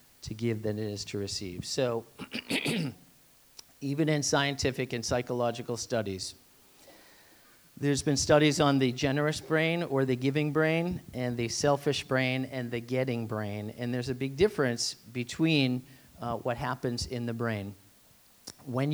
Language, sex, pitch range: English, male, 120-145 Hz